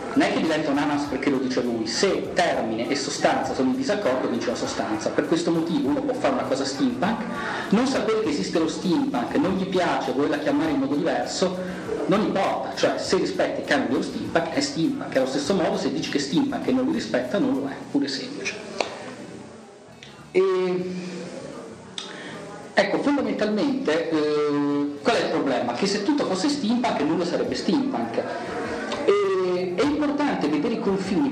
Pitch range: 170-290 Hz